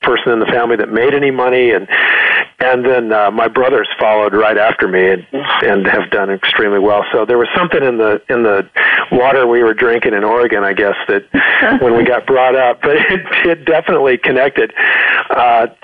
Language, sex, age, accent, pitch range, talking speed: English, male, 50-69, American, 115-145 Hz, 195 wpm